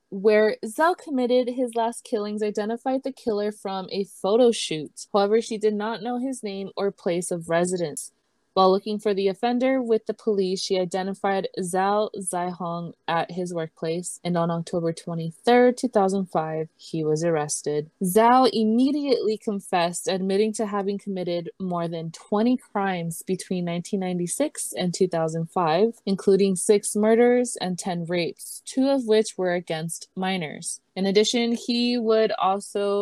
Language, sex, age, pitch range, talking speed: English, female, 20-39, 175-220 Hz, 145 wpm